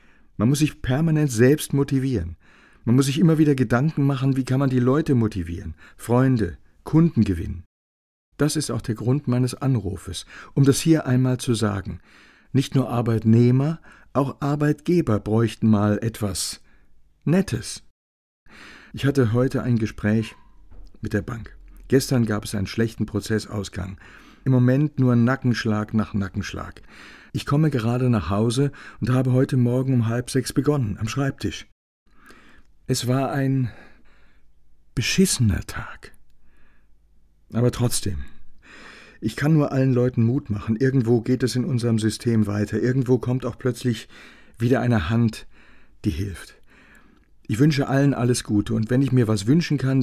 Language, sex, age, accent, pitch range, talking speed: German, male, 60-79, German, 105-130 Hz, 145 wpm